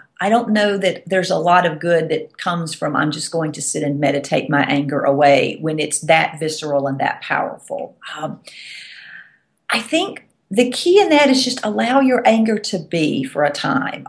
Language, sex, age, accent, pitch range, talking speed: English, female, 40-59, American, 155-225 Hz, 195 wpm